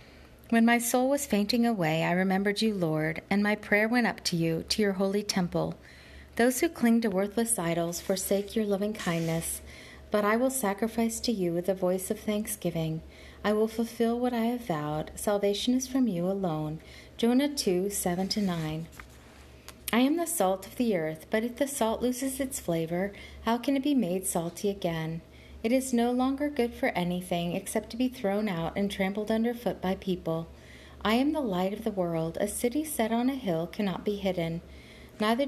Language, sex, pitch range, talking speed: English, female, 175-235 Hz, 190 wpm